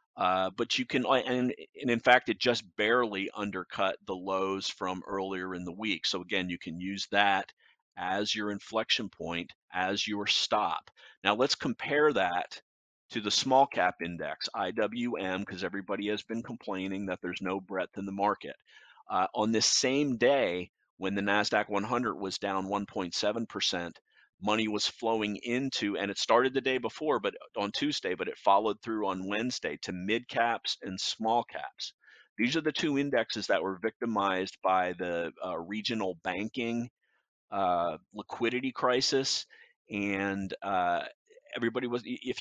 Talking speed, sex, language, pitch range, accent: 160 wpm, male, English, 95-125 Hz, American